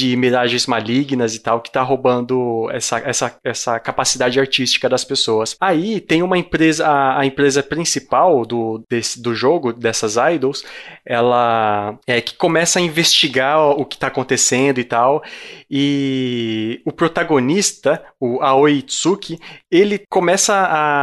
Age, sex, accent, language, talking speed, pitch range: 20-39, male, Brazilian, Portuguese, 145 wpm, 125-160 Hz